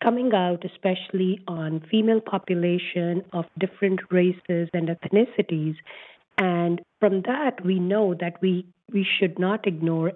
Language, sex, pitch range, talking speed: English, female, 175-205 Hz, 130 wpm